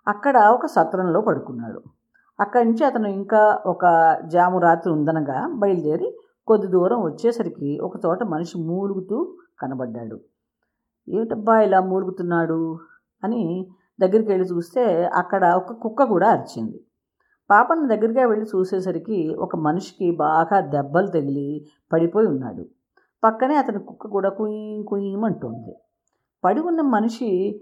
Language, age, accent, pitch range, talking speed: English, 50-69, Indian, 165-220 Hz, 135 wpm